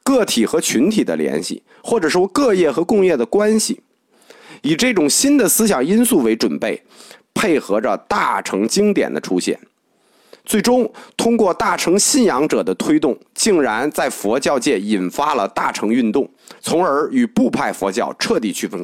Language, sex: Chinese, male